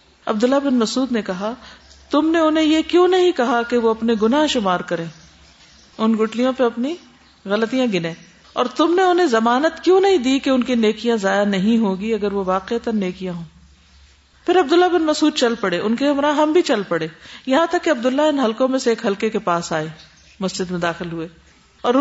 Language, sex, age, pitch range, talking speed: Urdu, female, 50-69, 195-275 Hz, 200 wpm